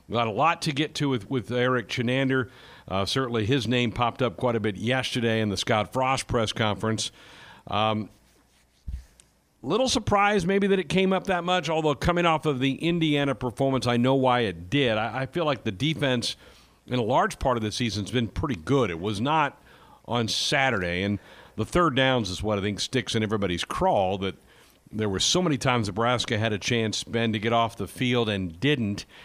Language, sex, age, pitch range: English, male, 50-69, 105-135 Hz